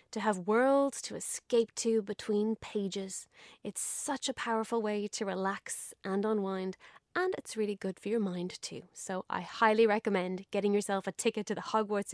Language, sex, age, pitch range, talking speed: English, female, 20-39, 195-240 Hz, 180 wpm